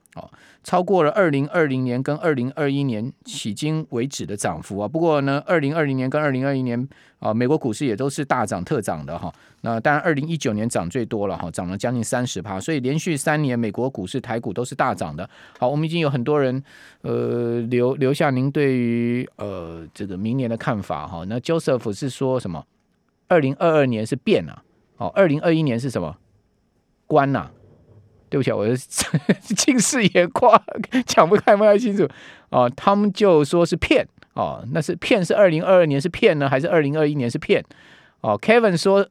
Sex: male